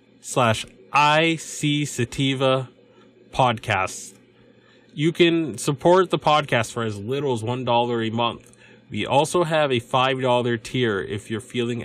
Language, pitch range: English, 115-150 Hz